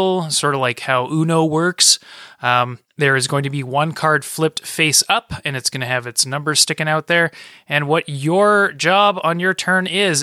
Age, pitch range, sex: 20-39, 130-165 Hz, male